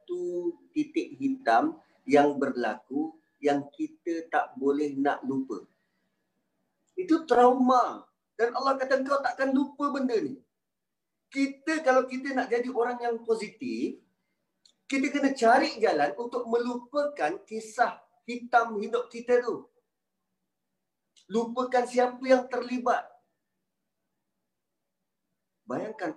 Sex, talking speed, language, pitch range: male, 105 wpm, Malay, 180-275 Hz